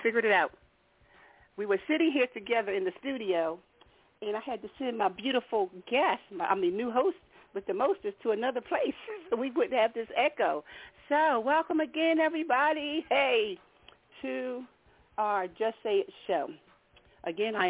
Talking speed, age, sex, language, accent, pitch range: 165 wpm, 40-59, female, English, American, 190-320 Hz